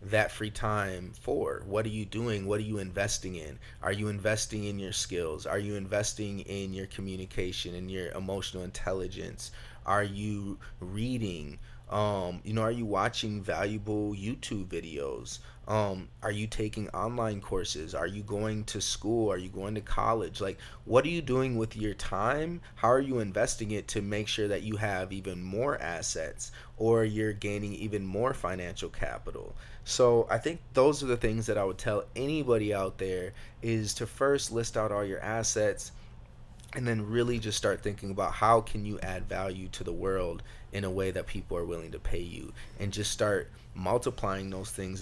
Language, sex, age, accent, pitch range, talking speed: English, male, 30-49, American, 95-110 Hz, 185 wpm